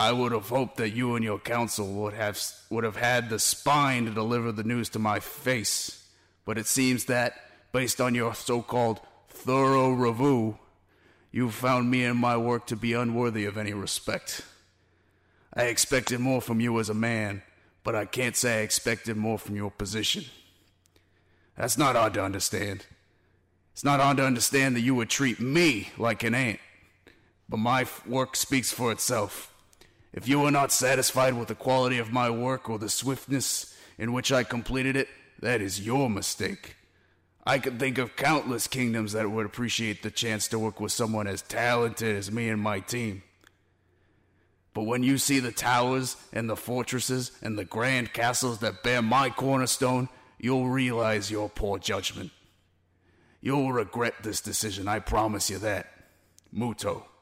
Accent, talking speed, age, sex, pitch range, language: American, 170 wpm, 30-49, male, 100-125 Hz, English